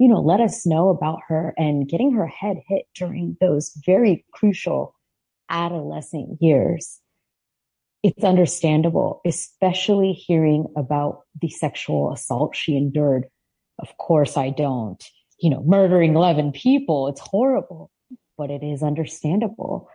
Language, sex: English, female